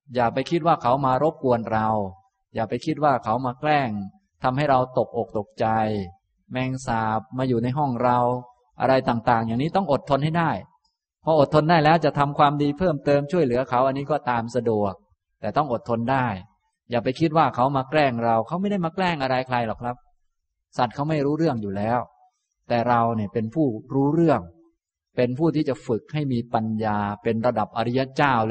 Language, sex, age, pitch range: Thai, male, 20-39, 110-145 Hz